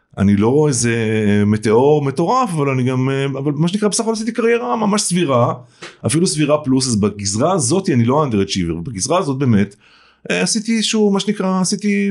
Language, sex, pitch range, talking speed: Hebrew, male, 120-175 Hz, 180 wpm